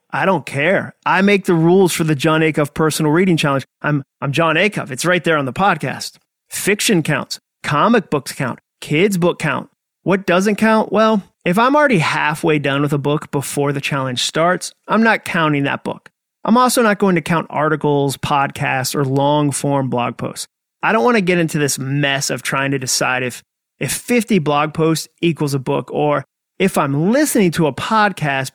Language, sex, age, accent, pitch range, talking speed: English, male, 30-49, American, 140-180 Hz, 195 wpm